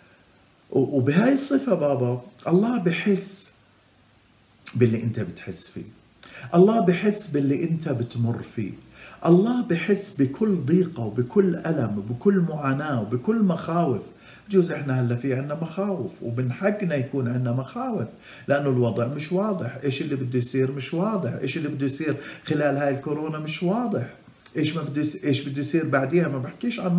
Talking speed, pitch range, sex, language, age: 140 wpm, 130-185 Hz, male, Arabic, 50-69